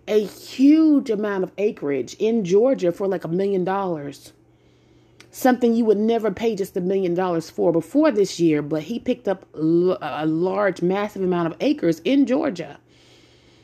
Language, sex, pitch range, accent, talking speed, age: English, female, 180-255 Hz, American, 165 wpm, 30-49